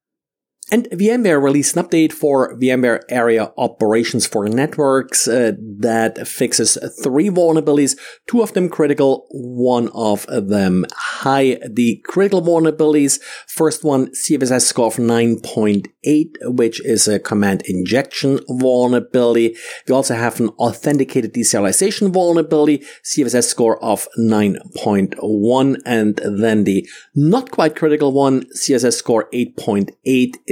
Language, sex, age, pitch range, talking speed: English, male, 50-69, 115-145 Hz, 120 wpm